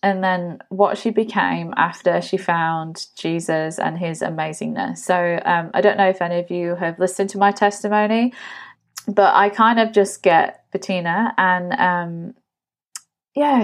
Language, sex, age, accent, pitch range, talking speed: English, female, 20-39, British, 175-220 Hz, 160 wpm